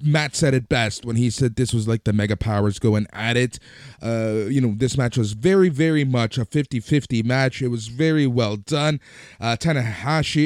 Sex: male